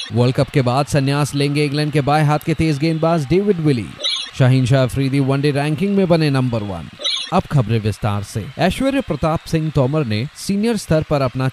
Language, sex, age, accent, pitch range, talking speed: Hindi, male, 30-49, native, 120-150 Hz, 195 wpm